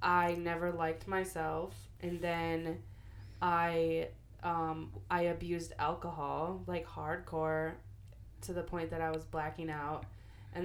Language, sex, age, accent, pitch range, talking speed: English, female, 20-39, American, 105-165 Hz, 125 wpm